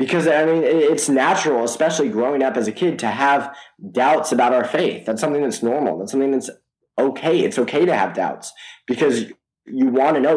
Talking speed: 205 wpm